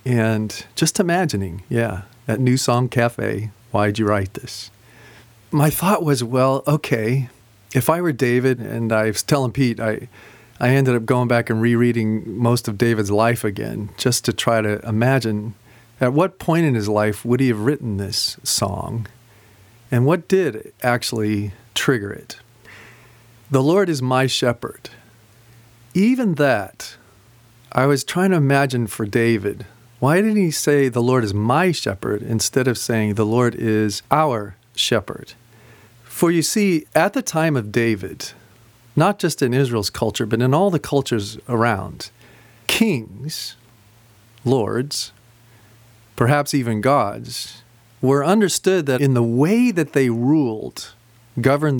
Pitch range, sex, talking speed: 110-140 Hz, male, 145 wpm